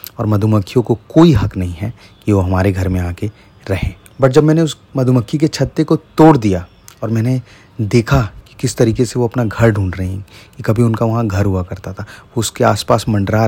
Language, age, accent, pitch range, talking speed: Hindi, 30-49, native, 100-120 Hz, 220 wpm